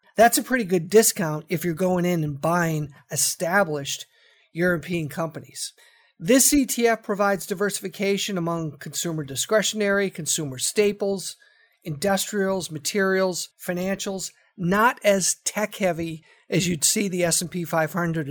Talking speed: 120 wpm